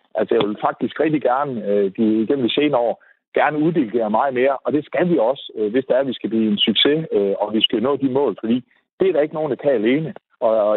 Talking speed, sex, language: 275 wpm, male, Danish